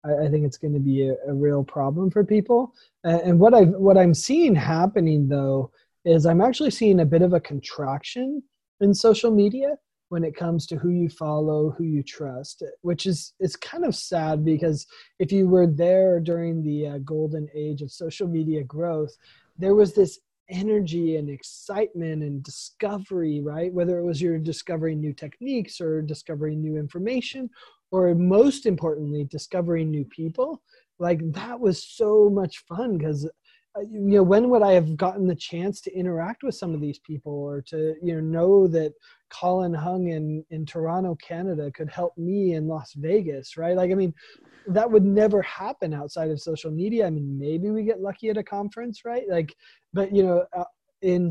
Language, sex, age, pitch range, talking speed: English, male, 20-39, 155-200 Hz, 180 wpm